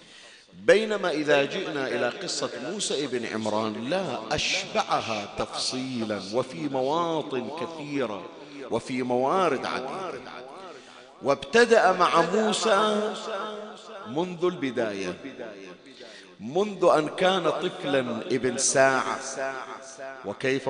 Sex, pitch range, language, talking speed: male, 120-145 Hz, Arabic, 85 wpm